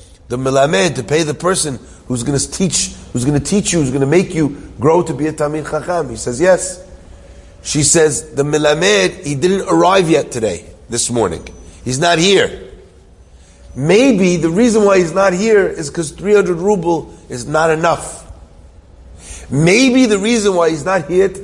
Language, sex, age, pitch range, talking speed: English, male, 40-59, 135-195 Hz, 180 wpm